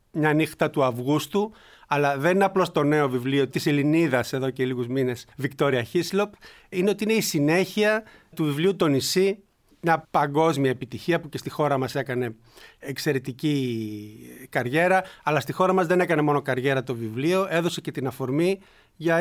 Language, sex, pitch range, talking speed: Greek, male, 140-175 Hz, 170 wpm